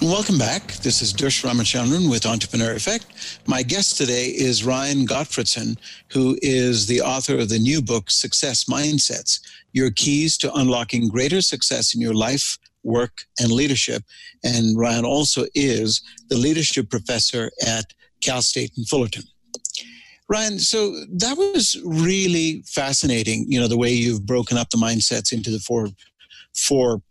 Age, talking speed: 60-79, 150 wpm